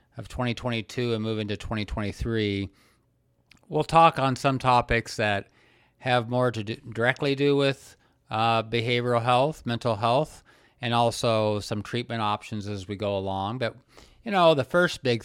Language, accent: English, American